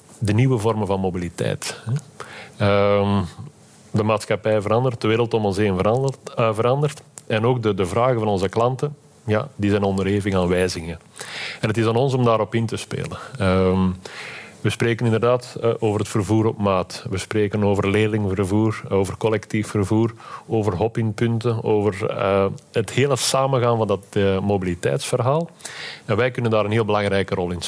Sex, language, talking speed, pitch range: male, Dutch, 155 wpm, 100-120 Hz